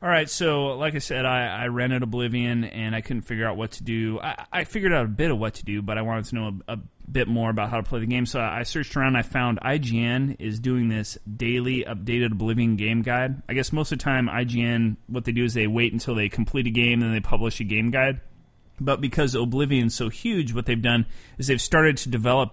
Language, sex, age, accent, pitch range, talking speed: English, male, 30-49, American, 115-135 Hz, 260 wpm